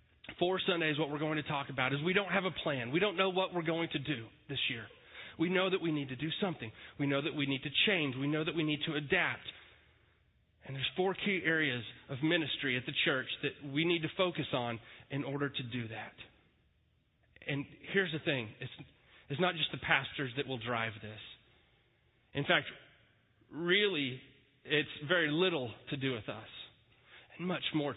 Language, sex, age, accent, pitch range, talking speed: English, male, 30-49, American, 125-180 Hz, 200 wpm